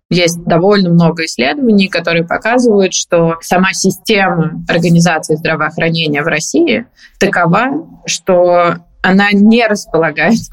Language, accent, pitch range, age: Russian, native, 165-200 Hz, 20-39